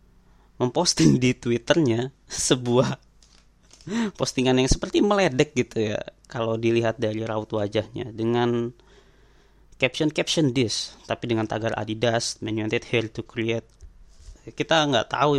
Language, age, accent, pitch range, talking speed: Indonesian, 20-39, native, 110-130 Hz, 115 wpm